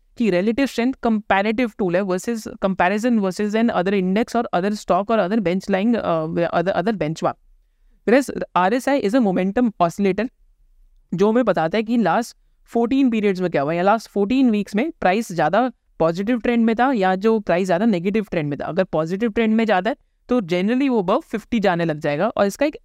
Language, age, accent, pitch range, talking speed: Hindi, 20-39, native, 180-230 Hz, 135 wpm